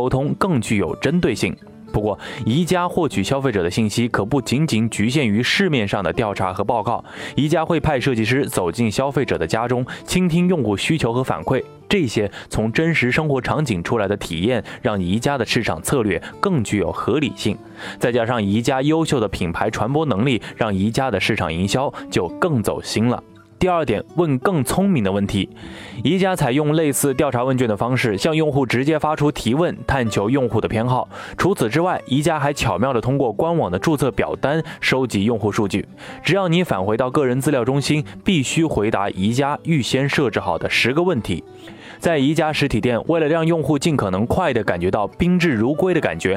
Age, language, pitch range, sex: 20-39, Chinese, 110-155 Hz, male